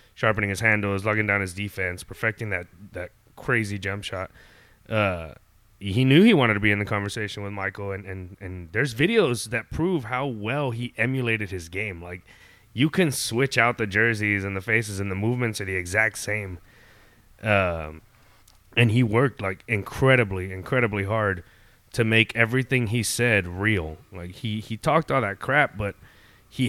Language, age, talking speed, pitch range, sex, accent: English, 20-39, 175 wpm, 100-125 Hz, male, American